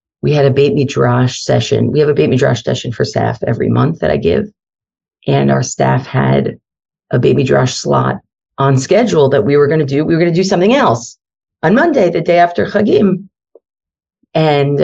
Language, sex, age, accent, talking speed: English, female, 40-59, American, 200 wpm